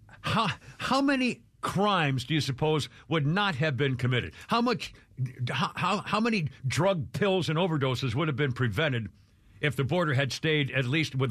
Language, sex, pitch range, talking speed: English, male, 125-195 Hz, 180 wpm